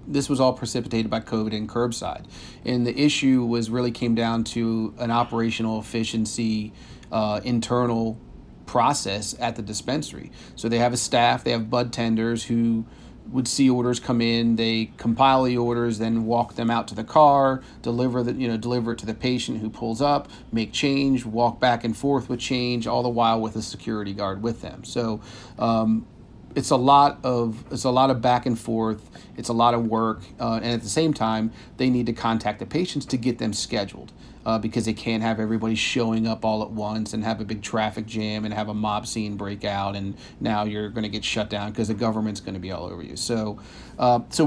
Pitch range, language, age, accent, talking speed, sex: 110-120 Hz, English, 40-59, American, 215 wpm, male